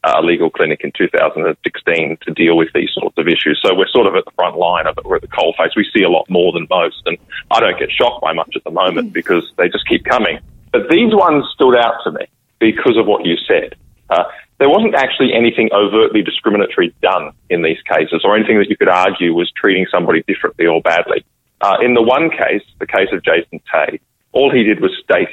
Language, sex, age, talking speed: English, male, 30-49, 240 wpm